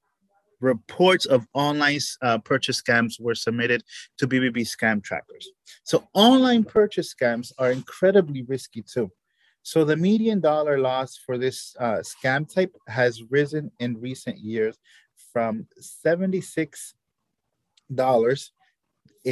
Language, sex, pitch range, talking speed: English, male, 115-150 Hz, 115 wpm